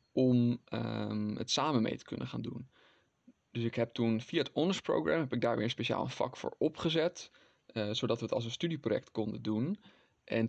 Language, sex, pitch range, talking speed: Dutch, male, 115-135 Hz, 205 wpm